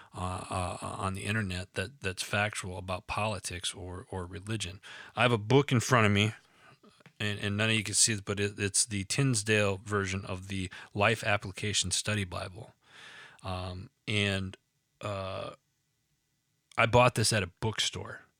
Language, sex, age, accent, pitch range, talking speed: English, male, 30-49, American, 100-120 Hz, 165 wpm